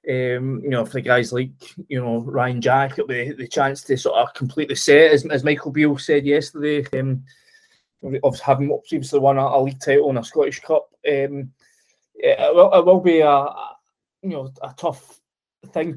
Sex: male